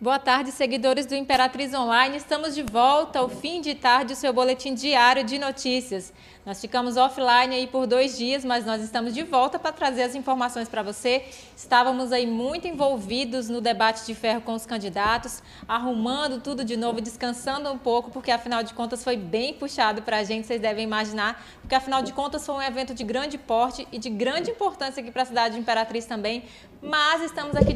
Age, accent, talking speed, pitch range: 20-39, Brazilian, 200 wpm, 240-275 Hz